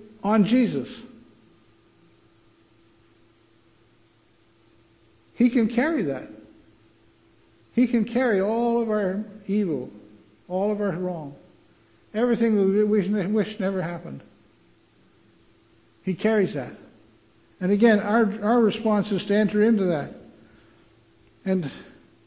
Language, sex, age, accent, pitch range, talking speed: English, male, 60-79, American, 125-210 Hz, 100 wpm